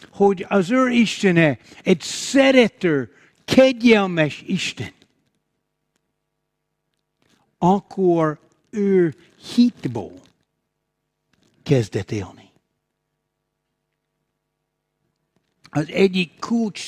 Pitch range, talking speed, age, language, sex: 150-200 Hz, 55 wpm, 60-79, Hungarian, male